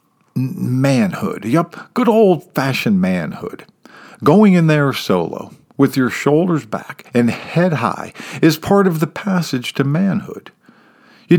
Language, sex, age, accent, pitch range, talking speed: English, male, 50-69, American, 145-200 Hz, 130 wpm